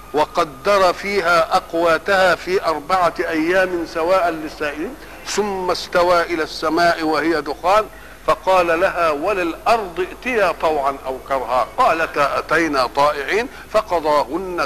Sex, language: male, Arabic